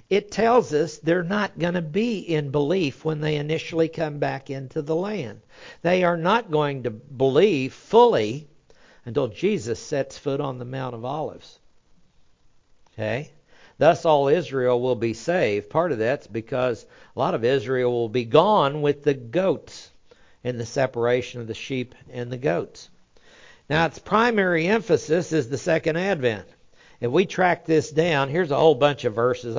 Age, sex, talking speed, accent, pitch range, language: 60-79, male, 170 wpm, American, 120-160 Hz, English